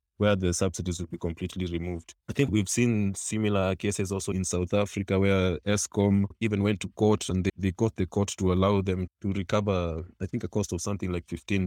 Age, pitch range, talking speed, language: 20-39, 90-105 Hz, 215 wpm, English